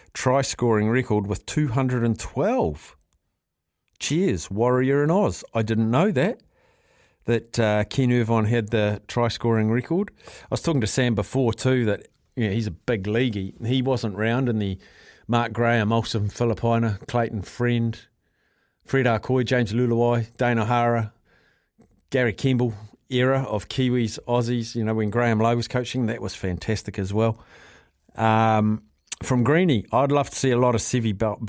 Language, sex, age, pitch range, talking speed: English, male, 50-69, 110-125 Hz, 155 wpm